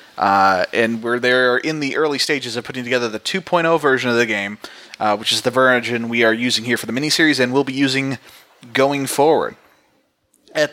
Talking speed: 205 wpm